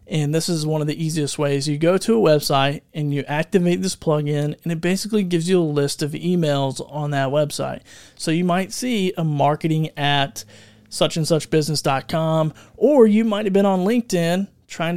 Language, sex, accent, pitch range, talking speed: English, male, American, 150-185 Hz, 185 wpm